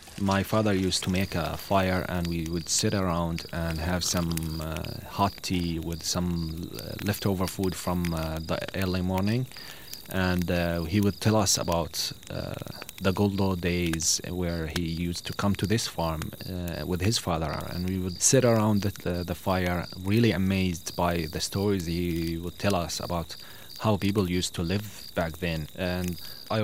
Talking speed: 175 wpm